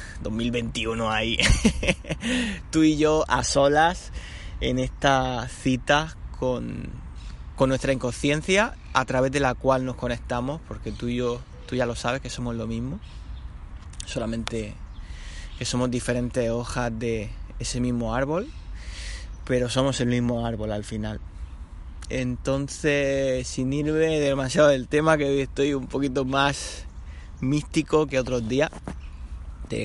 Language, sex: Spanish, male